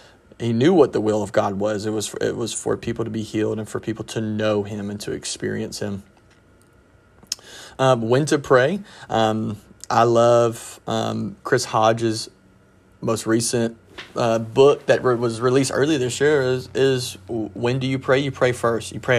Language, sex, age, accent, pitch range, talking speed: English, male, 30-49, American, 105-120 Hz, 190 wpm